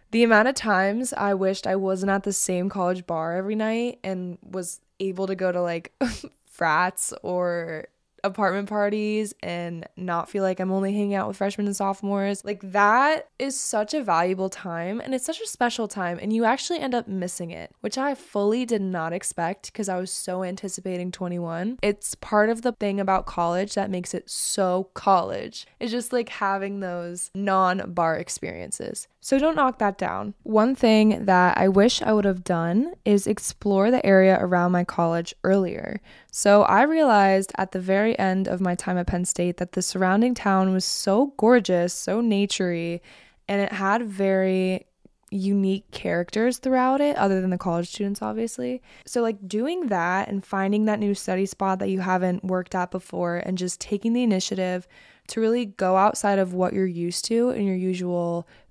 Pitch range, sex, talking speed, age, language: 180-215 Hz, female, 185 wpm, 20-39, English